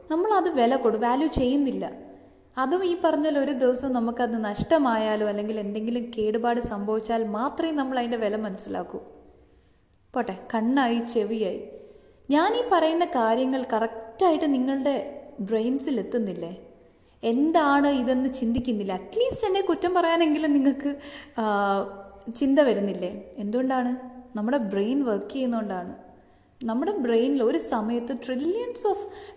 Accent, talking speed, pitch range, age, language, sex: native, 105 wpm, 220-285 Hz, 20-39, Malayalam, female